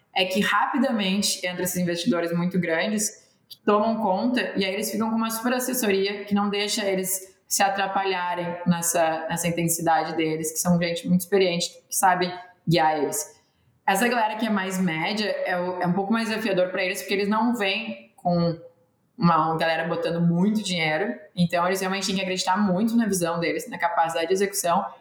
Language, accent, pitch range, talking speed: Portuguese, Brazilian, 170-205 Hz, 185 wpm